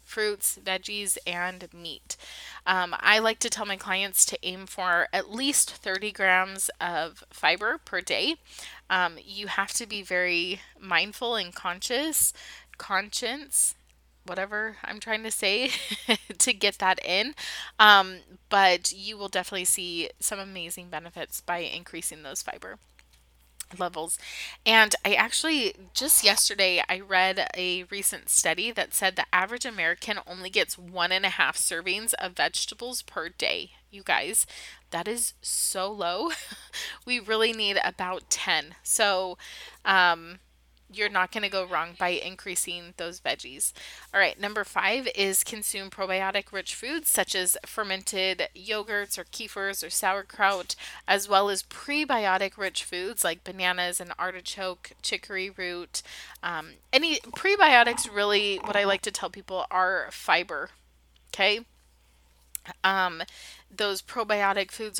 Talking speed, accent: 140 wpm, American